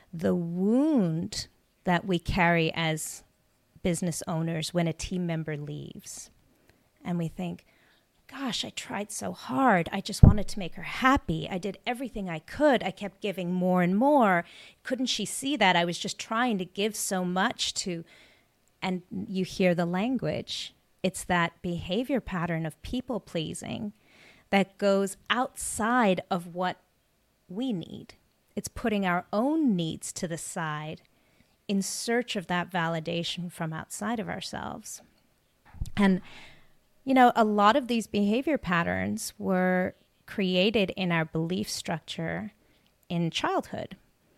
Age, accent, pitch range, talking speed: 30-49, American, 170-210 Hz, 140 wpm